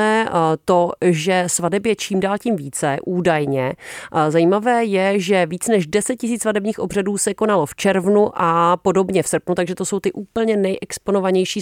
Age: 40-59